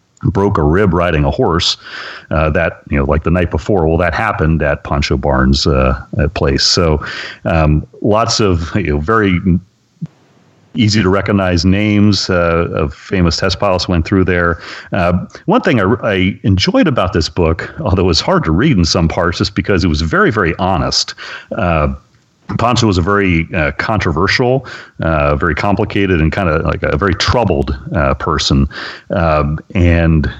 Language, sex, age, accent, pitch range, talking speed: English, male, 40-59, American, 80-100 Hz, 170 wpm